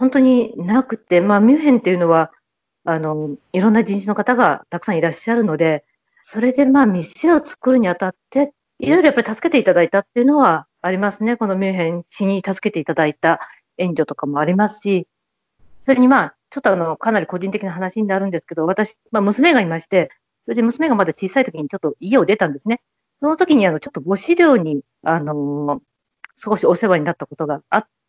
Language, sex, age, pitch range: English, female, 40-59, 170-240 Hz